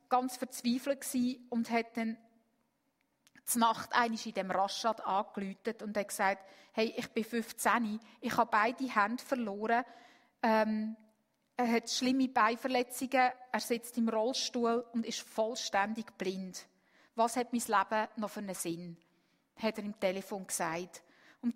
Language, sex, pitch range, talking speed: German, female, 220-270 Hz, 140 wpm